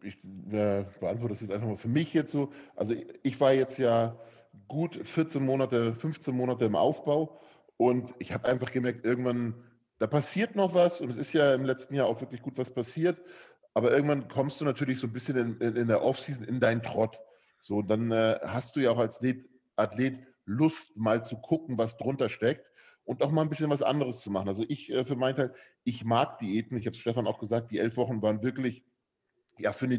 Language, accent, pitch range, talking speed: English, German, 110-135 Hz, 220 wpm